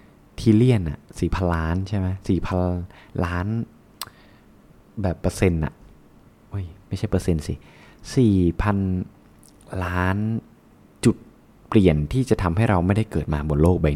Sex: male